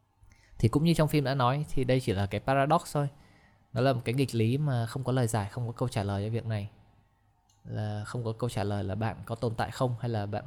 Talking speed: 275 wpm